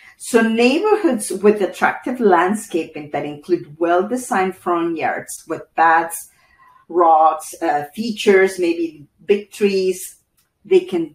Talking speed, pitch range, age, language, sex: 110 wpm, 165-230 Hz, 50-69, English, female